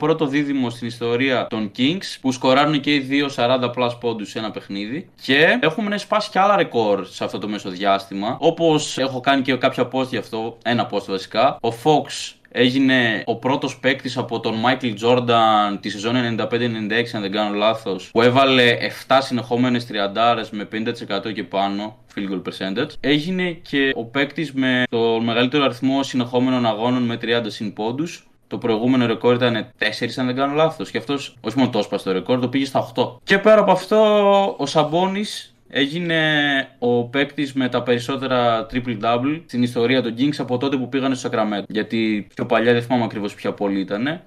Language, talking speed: Greek, 180 wpm